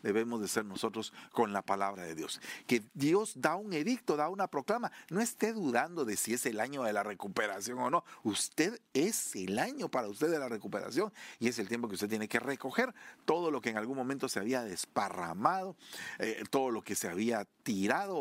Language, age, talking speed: Spanish, 50-69, 210 wpm